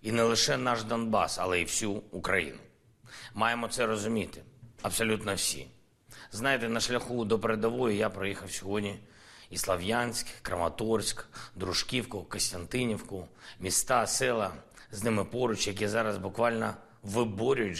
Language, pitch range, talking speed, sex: Ukrainian, 95-115 Hz, 120 wpm, male